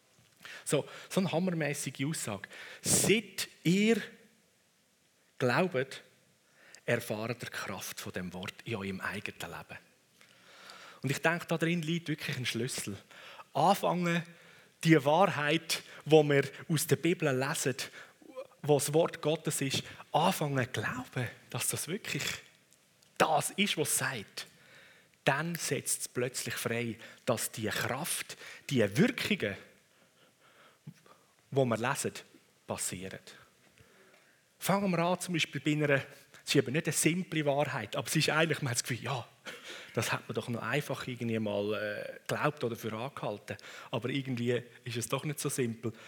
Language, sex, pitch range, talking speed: German, male, 120-165 Hz, 140 wpm